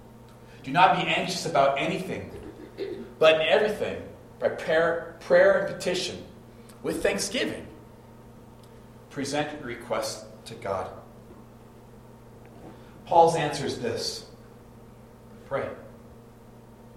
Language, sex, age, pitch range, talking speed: English, male, 40-59, 115-135 Hz, 90 wpm